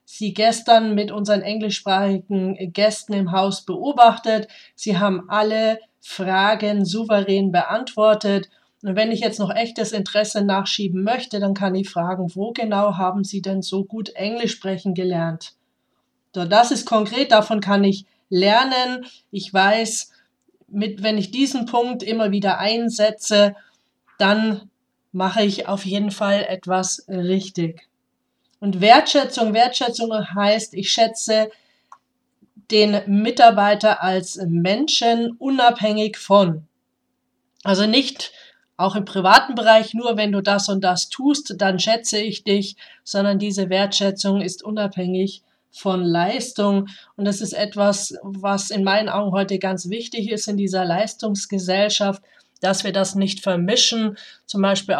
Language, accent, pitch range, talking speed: German, German, 195-220 Hz, 130 wpm